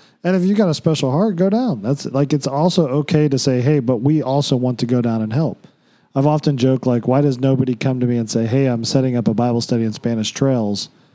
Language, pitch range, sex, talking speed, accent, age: English, 115-145 Hz, male, 260 wpm, American, 40-59